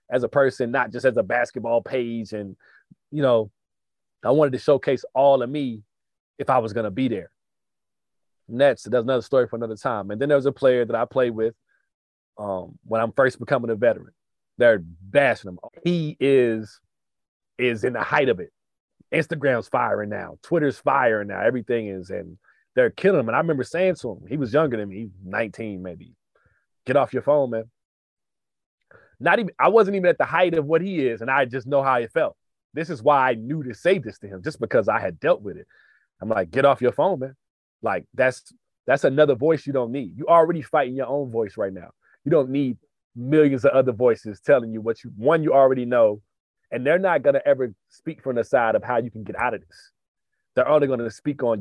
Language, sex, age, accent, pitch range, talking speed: English, male, 30-49, American, 115-145 Hz, 225 wpm